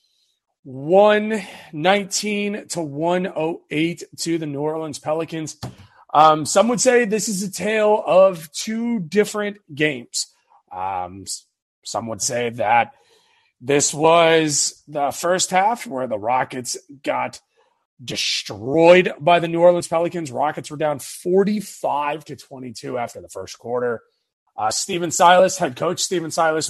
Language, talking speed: English, 130 wpm